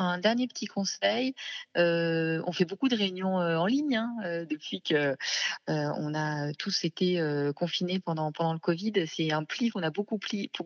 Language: French